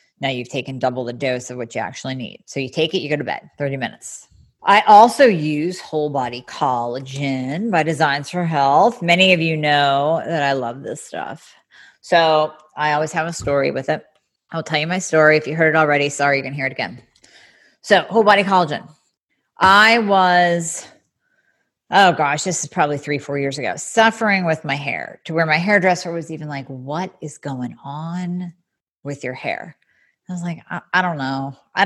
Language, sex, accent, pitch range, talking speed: English, female, American, 140-180 Hz, 200 wpm